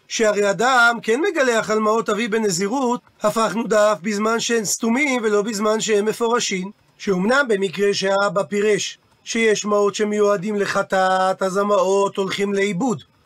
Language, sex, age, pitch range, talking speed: Hebrew, male, 40-59, 195-230 Hz, 130 wpm